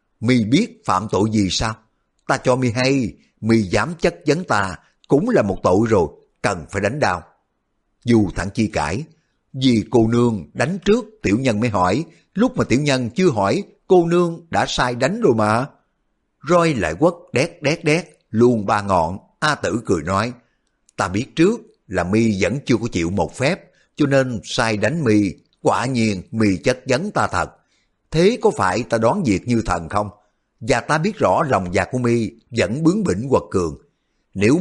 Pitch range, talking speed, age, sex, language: 105-150 Hz, 190 wpm, 60-79, male, Vietnamese